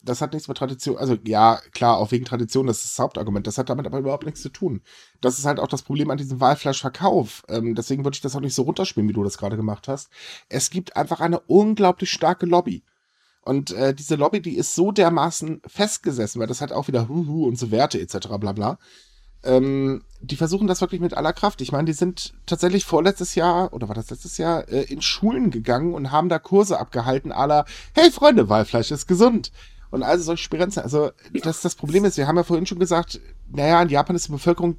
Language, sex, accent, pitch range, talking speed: German, male, German, 125-175 Hz, 225 wpm